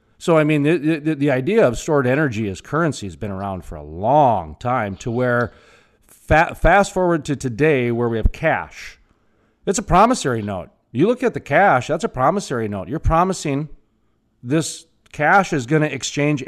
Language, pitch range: English, 120-175 Hz